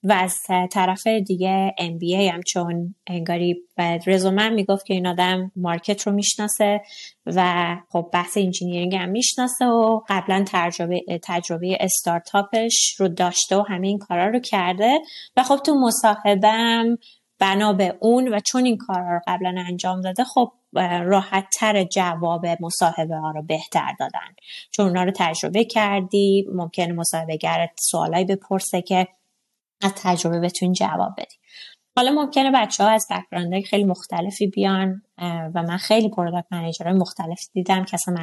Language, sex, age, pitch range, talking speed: Persian, female, 20-39, 180-220 Hz, 145 wpm